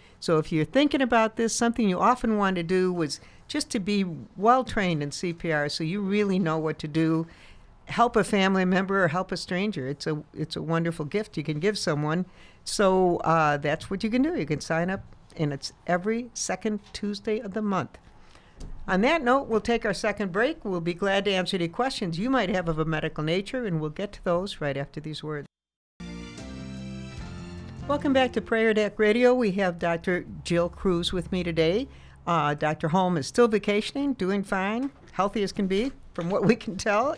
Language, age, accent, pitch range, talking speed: English, 60-79, American, 160-205 Hz, 200 wpm